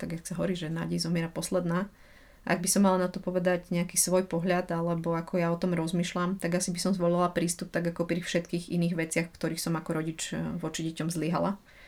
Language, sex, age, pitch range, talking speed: Slovak, female, 30-49, 170-185 Hz, 215 wpm